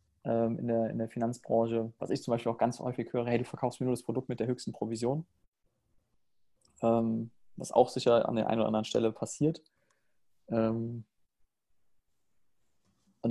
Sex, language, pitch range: male, German, 110-125 Hz